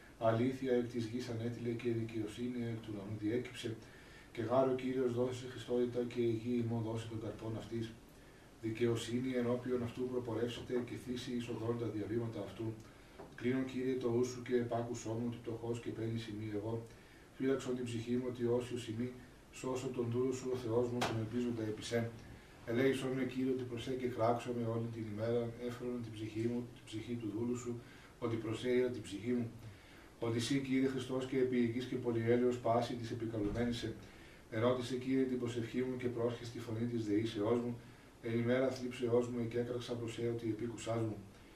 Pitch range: 115-125 Hz